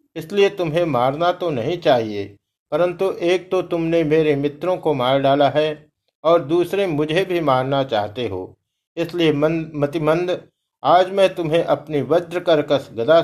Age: 60-79